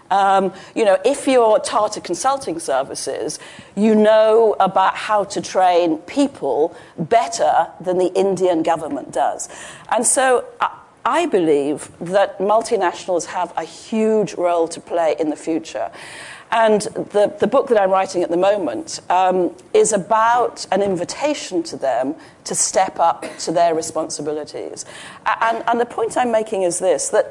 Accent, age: British, 40-59